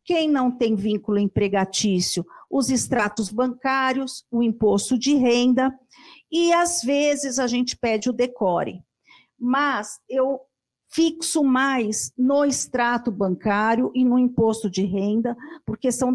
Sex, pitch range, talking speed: female, 210-265 Hz, 125 wpm